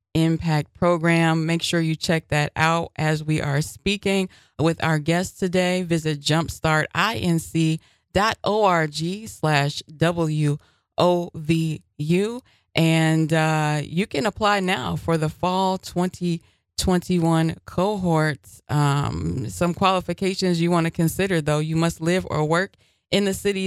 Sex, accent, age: female, American, 20-39